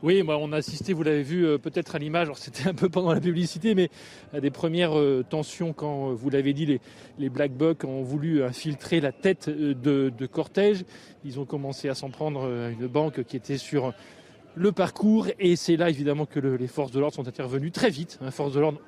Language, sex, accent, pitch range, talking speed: French, male, French, 145-175 Hz, 215 wpm